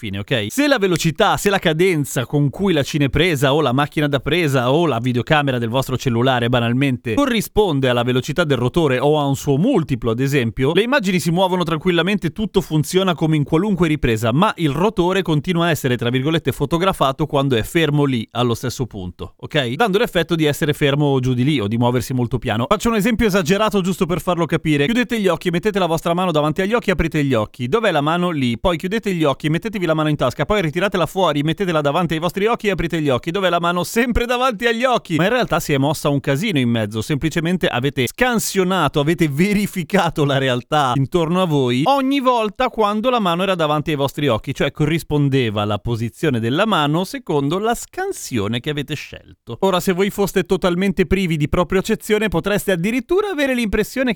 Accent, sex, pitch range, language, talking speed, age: native, male, 140-195 Hz, Italian, 205 wpm, 30-49